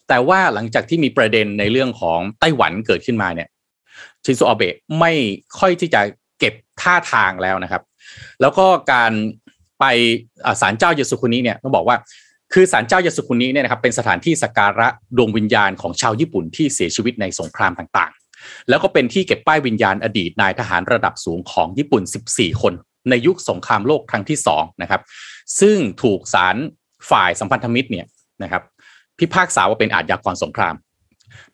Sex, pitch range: male, 110-160 Hz